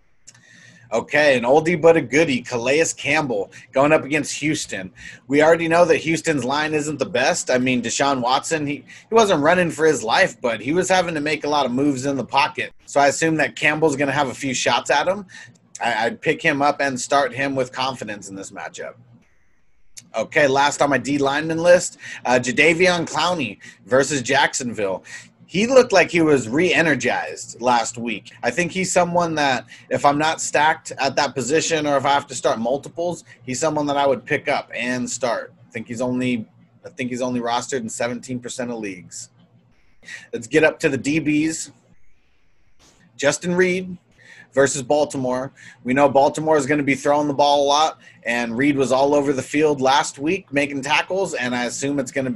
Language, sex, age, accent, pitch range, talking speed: English, male, 30-49, American, 125-155 Hz, 195 wpm